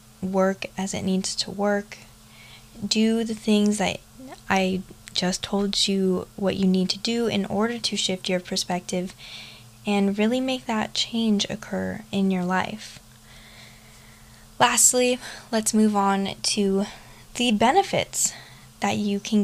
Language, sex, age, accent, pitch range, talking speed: English, female, 10-29, American, 185-220 Hz, 135 wpm